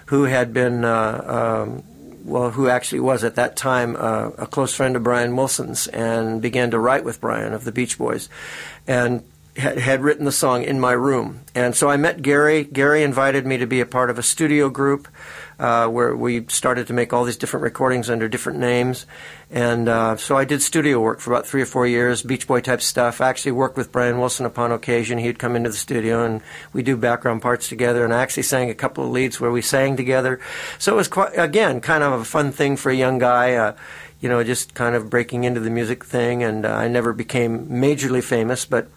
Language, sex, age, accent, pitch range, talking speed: English, male, 50-69, American, 120-135 Hz, 225 wpm